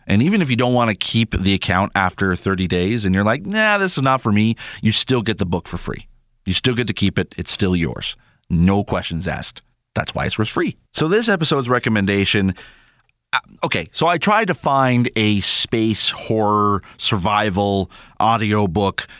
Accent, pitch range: American, 95-130 Hz